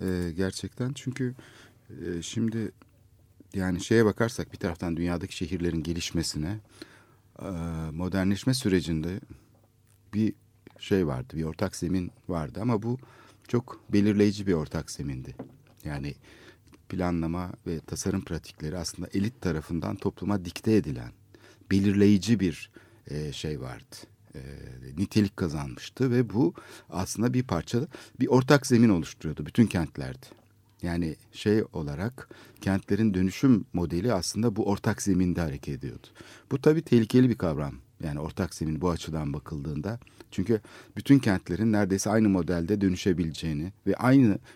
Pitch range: 85-110 Hz